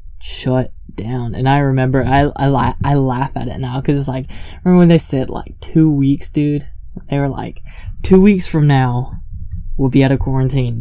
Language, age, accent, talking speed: English, 10-29, American, 195 wpm